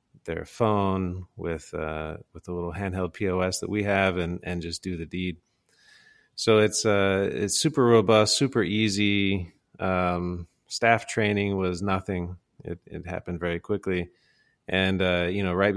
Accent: American